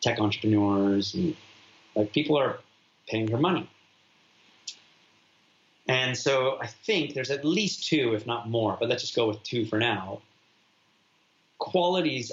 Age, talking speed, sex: 30-49, 140 wpm, male